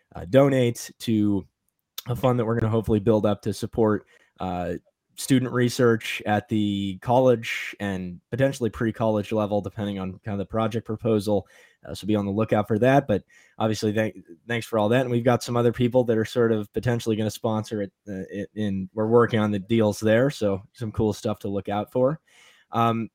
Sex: male